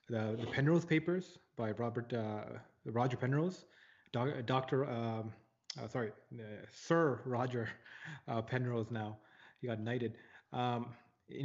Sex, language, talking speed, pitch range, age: male, English, 130 wpm, 115-140 Hz, 20-39